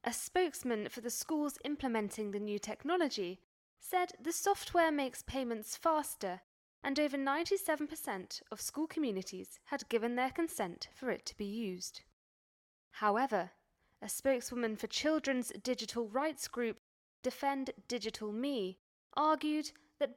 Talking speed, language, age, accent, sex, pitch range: 130 wpm, English, 10-29, British, female, 195-285 Hz